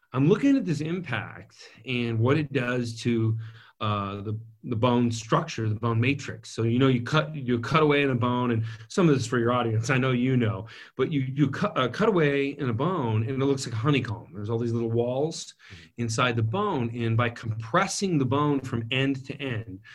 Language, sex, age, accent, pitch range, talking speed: English, male, 30-49, American, 115-145 Hz, 225 wpm